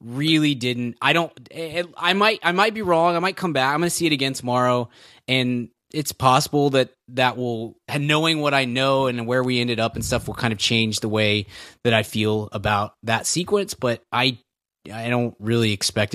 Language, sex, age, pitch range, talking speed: English, male, 20-39, 115-140 Hz, 210 wpm